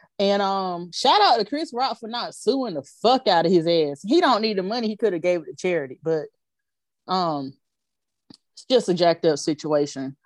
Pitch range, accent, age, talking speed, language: 175-225 Hz, American, 30-49, 210 wpm, English